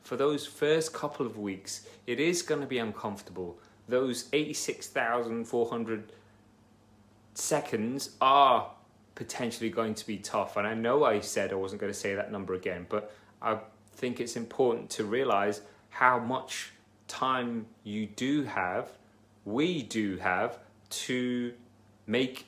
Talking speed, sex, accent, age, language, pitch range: 140 wpm, male, British, 30-49, English, 105-120 Hz